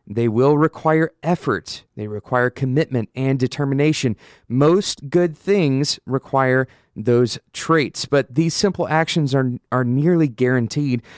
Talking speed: 125 wpm